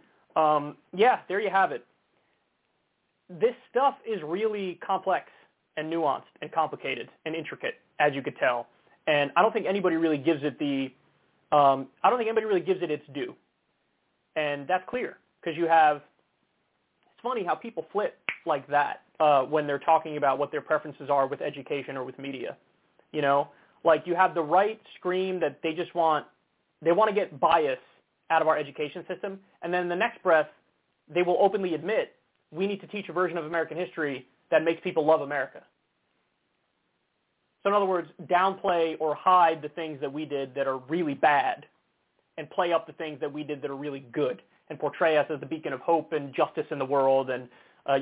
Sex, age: male, 20-39